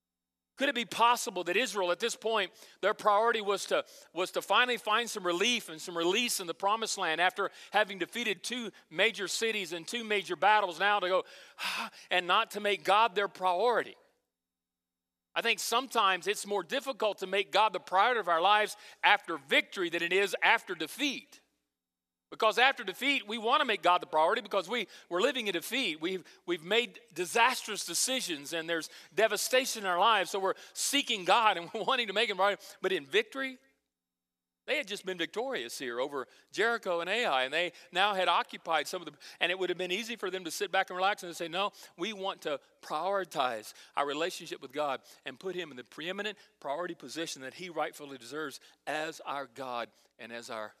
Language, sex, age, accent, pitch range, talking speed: English, male, 40-59, American, 165-220 Hz, 200 wpm